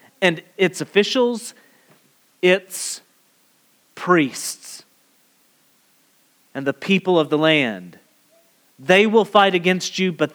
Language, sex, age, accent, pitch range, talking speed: English, male, 30-49, American, 135-185 Hz, 100 wpm